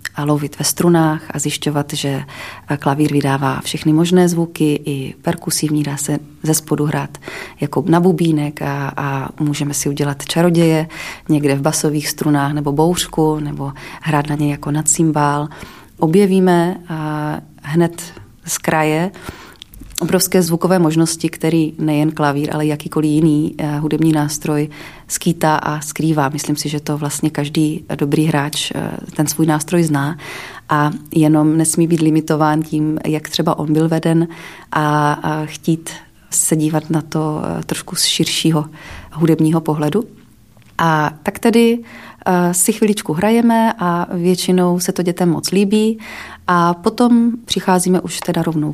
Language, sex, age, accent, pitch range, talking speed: Czech, female, 30-49, native, 150-170 Hz, 140 wpm